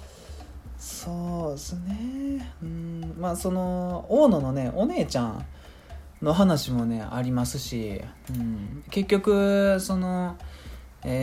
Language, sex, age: Japanese, male, 20-39